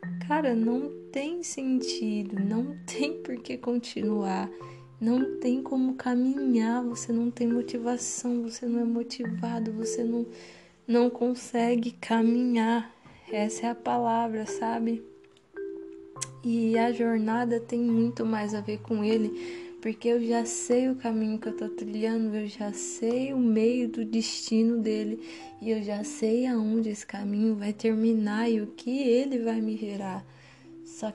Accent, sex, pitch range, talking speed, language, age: Brazilian, female, 175-240 Hz, 145 wpm, Portuguese, 20-39